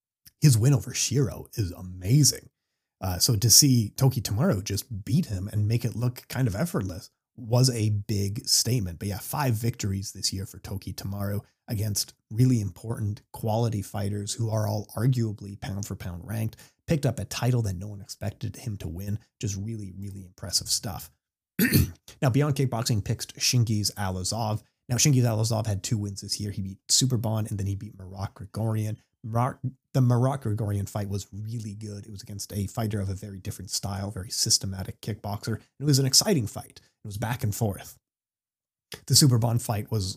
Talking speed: 185 wpm